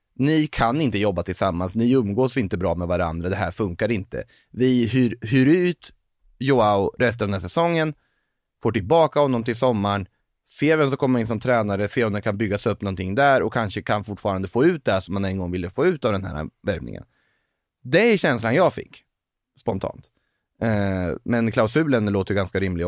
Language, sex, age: Swedish, male, 30-49